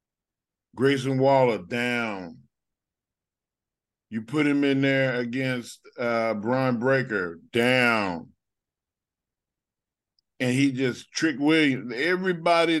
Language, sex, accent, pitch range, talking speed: English, male, American, 120-145 Hz, 90 wpm